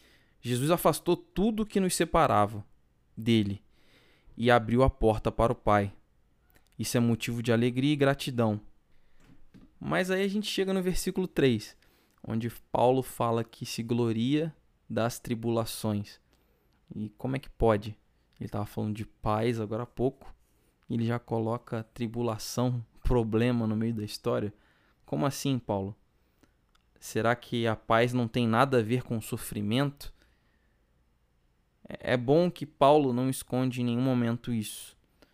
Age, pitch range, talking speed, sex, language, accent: 20-39, 105-125 Hz, 145 wpm, male, Portuguese, Brazilian